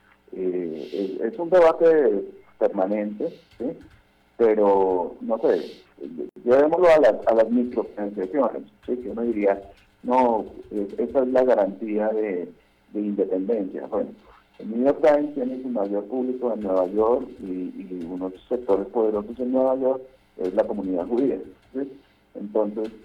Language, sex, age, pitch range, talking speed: Spanish, male, 50-69, 95-115 Hz, 150 wpm